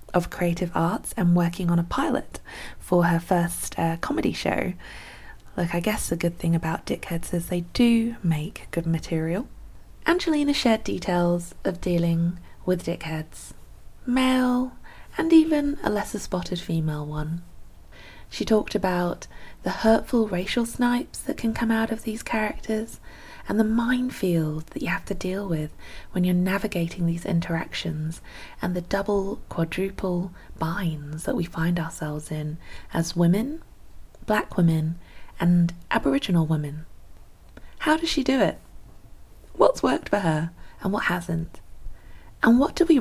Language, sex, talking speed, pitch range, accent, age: English, female, 145 wpm, 160-215 Hz, British, 20-39